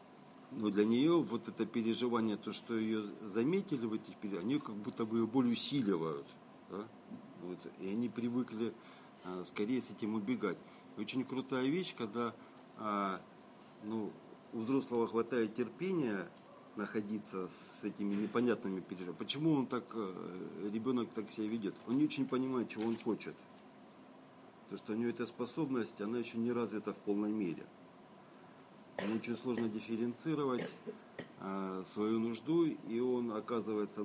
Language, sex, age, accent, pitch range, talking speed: Russian, male, 50-69, native, 105-125 Hz, 140 wpm